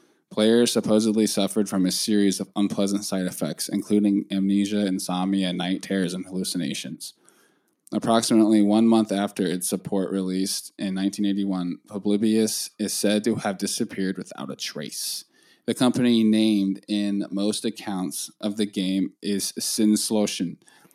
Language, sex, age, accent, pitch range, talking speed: English, male, 20-39, American, 95-110 Hz, 130 wpm